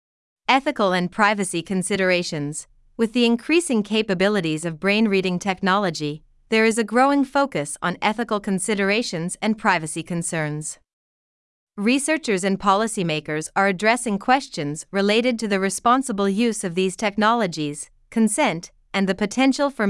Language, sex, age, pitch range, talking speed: Vietnamese, female, 30-49, 175-230 Hz, 125 wpm